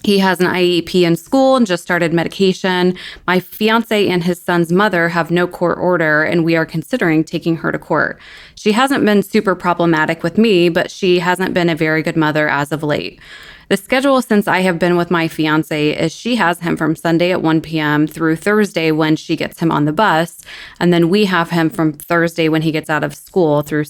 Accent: American